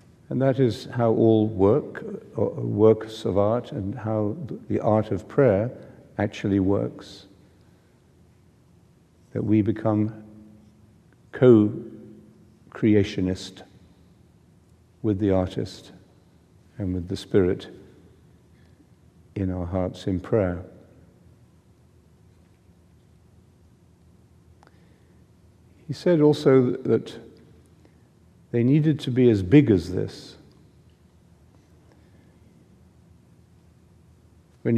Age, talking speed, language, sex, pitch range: 60-79, 80 wpm, English, male, 90-110 Hz